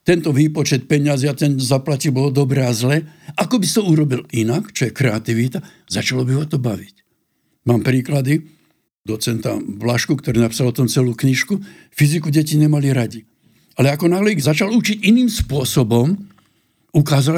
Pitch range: 130-160 Hz